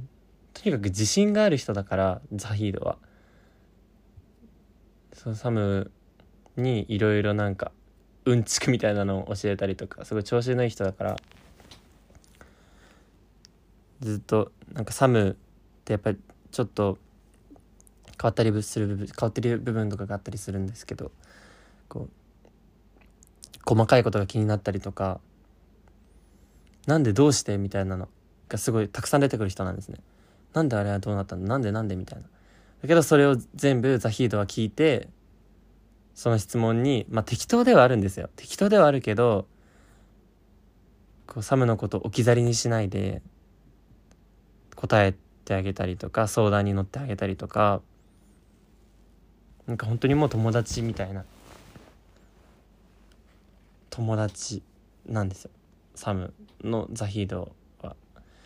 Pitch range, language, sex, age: 95-115 Hz, Japanese, male, 20-39